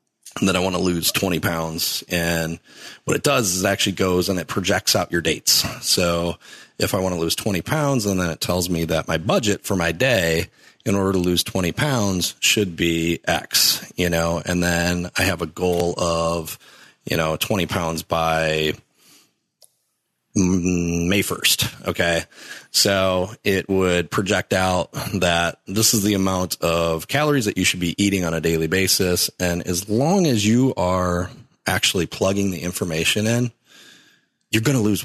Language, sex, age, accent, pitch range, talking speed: English, male, 30-49, American, 85-105 Hz, 175 wpm